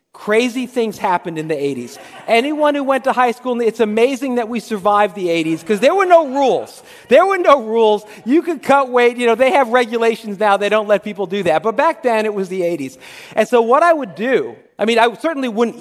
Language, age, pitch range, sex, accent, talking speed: English, 40-59, 190-250 Hz, male, American, 235 wpm